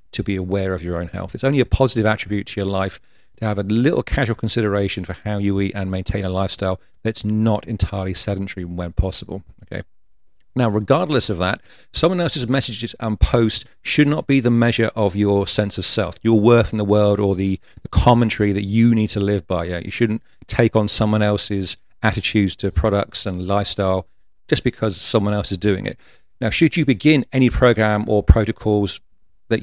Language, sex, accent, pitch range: English, male, British, 95-115 Hz